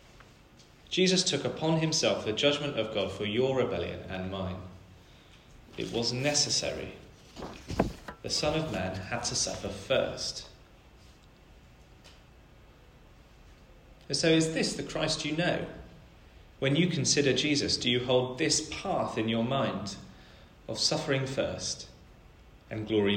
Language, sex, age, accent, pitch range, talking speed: English, male, 30-49, British, 90-135 Hz, 125 wpm